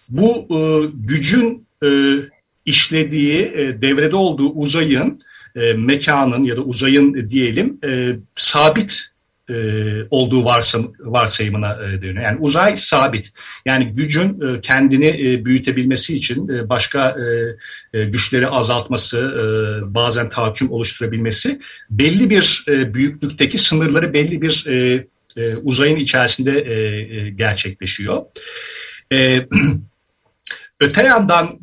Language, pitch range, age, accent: Turkish, 120-155 Hz, 50-69, native